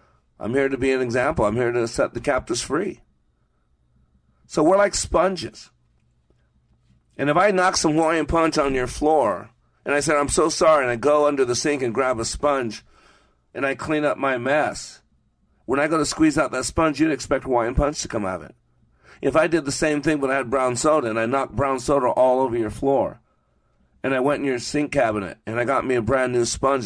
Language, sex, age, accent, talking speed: English, male, 40-59, American, 225 wpm